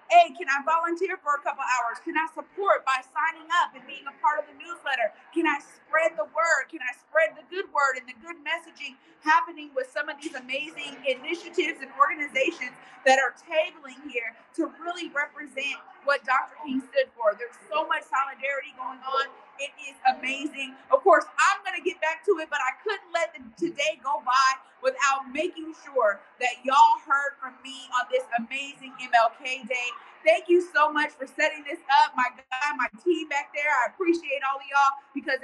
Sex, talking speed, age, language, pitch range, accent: female, 195 wpm, 40-59, English, 260-325 Hz, American